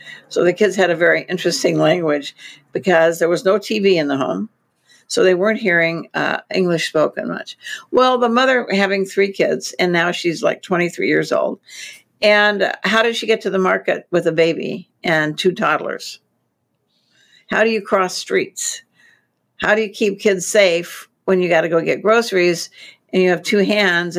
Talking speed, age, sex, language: 185 wpm, 60-79, female, English